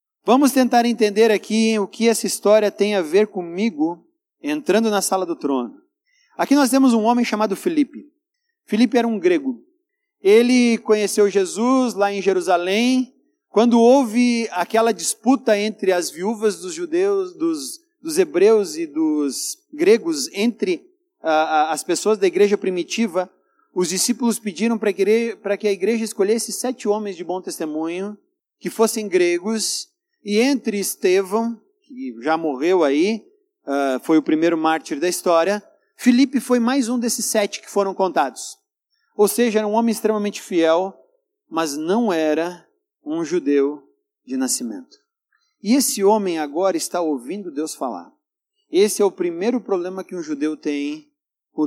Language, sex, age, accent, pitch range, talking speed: Portuguese, male, 40-59, Brazilian, 185-275 Hz, 145 wpm